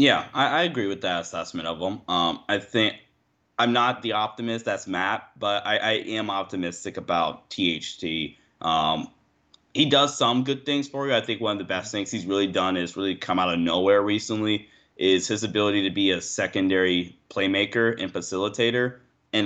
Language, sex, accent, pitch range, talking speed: English, male, American, 90-115 Hz, 190 wpm